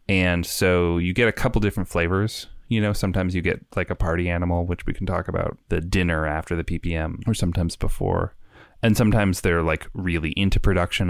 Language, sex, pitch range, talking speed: English, male, 85-100 Hz, 200 wpm